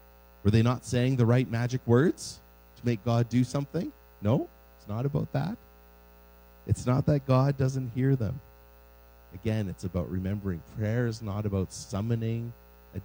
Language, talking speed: English, 160 wpm